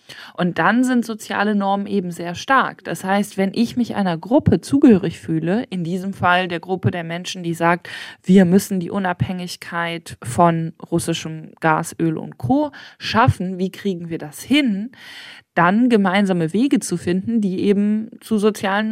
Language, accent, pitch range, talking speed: German, German, 170-205 Hz, 160 wpm